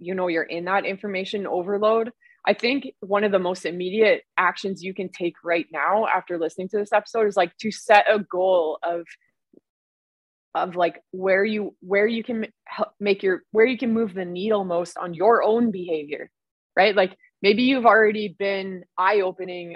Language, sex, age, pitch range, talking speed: English, female, 20-39, 180-215 Hz, 185 wpm